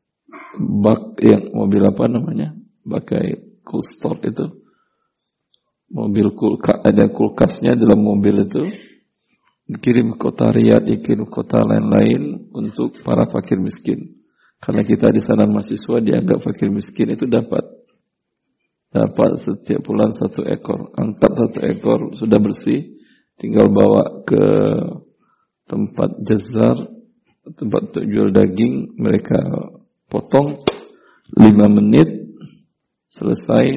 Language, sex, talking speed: Indonesian, male, 110 wpm